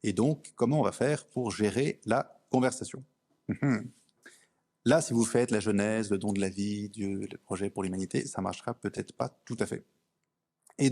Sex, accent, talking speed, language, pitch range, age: male, French, 190 wpm, French, 100-120 Hz, 30-49